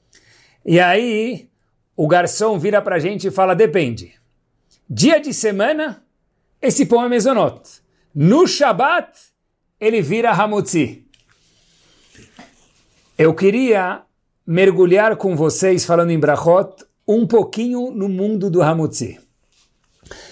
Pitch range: 160-225 Hz